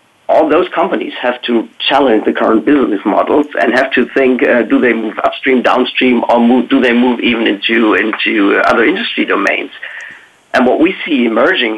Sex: male